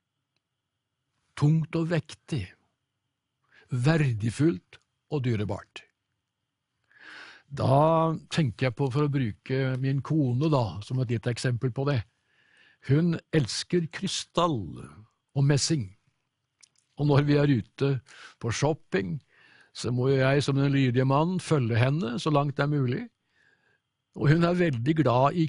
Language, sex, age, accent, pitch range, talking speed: English, male, 60-79, Norwegian, 130-165 Hz, 125 wpm